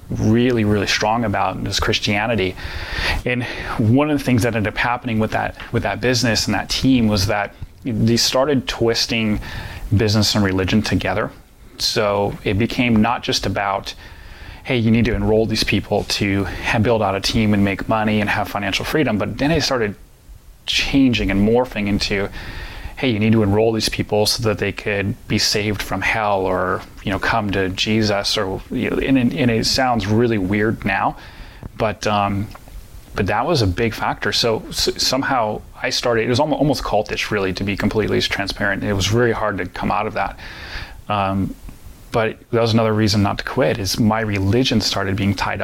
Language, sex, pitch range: English, male, 100-115 Hz